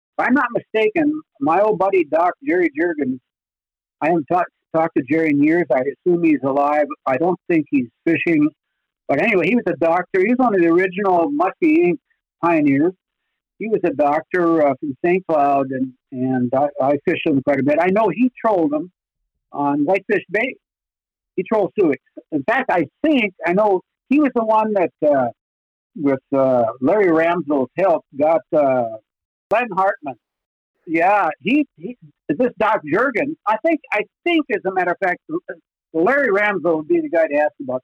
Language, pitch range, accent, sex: English, 155-240 Hz, American, male